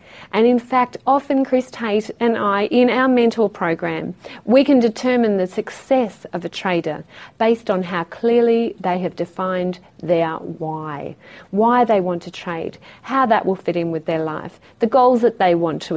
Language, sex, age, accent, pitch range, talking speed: English, female, 40-59, Australian, 175-235 Hz, 180 wpm